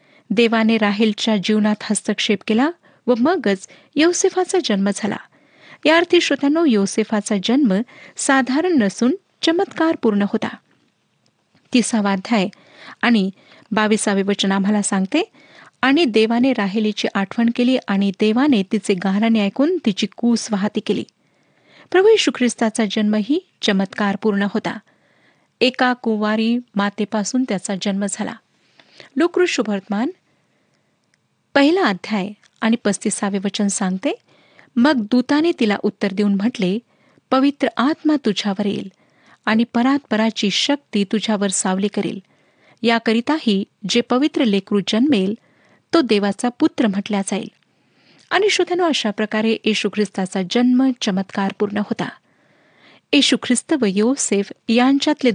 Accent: native